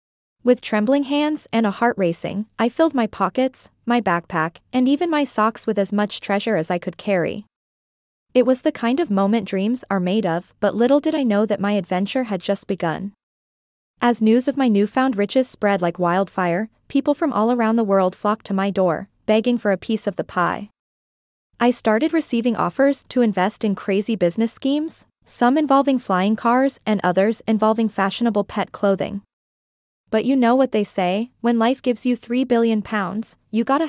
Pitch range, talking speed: 200-250 Hz, 190 wpm